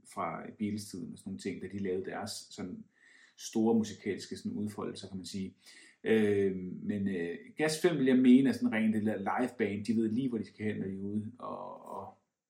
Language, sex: Danish, male